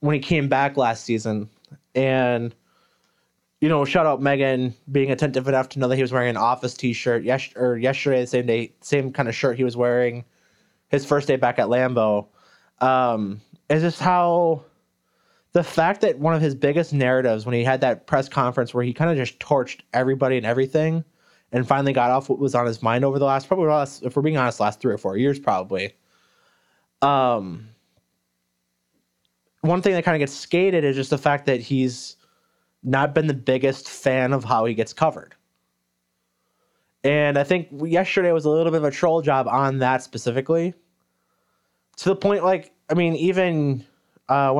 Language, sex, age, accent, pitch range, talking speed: English, male, 20-39, American, 125-155 Hz, 190 wpm